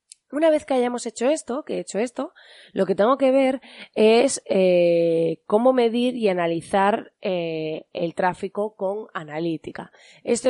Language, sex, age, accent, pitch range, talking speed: Spanish, female, 20-39, Spanish, 170-230 Hz, 155 wpm